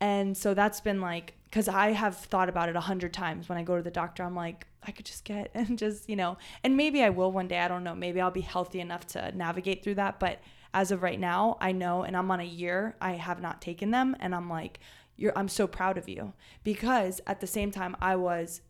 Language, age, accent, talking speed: English, 20-39, American, 260 wpm